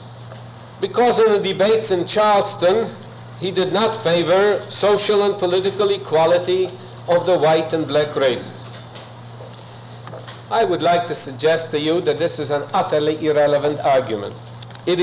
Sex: male